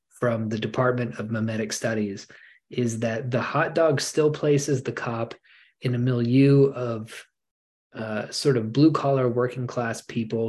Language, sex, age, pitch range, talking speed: English, male, 20-39, 110-130 Hz, 155 wpm